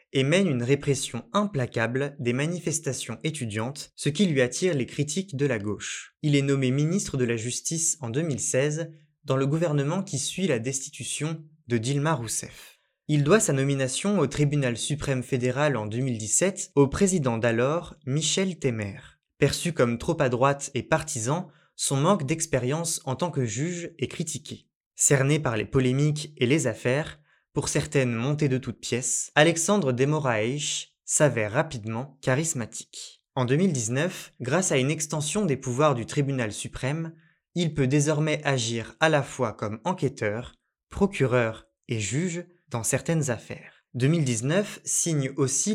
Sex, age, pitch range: male, 20-39, 125-160 Hz